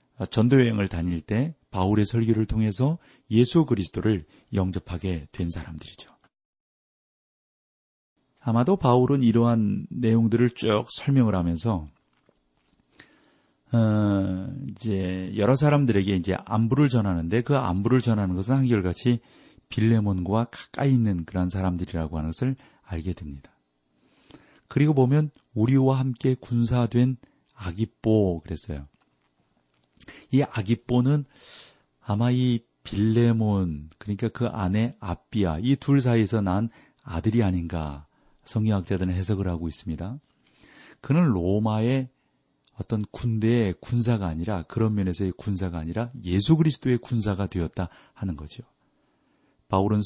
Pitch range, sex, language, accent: 90-120 Hz, male, Korean, native